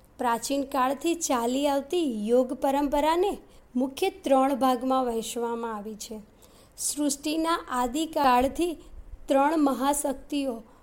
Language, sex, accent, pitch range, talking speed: Gujarati, female, native, 240-295 Hz, 90 wpm